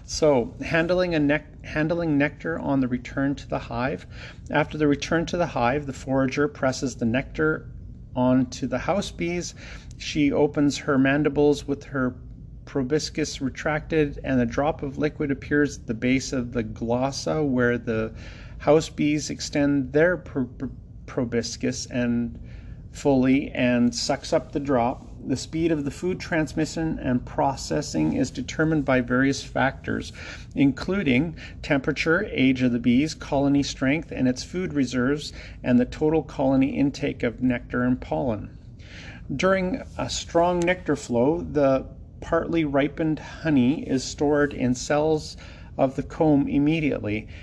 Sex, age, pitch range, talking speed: male, 40-59, 125-150 Hz, 145 wpm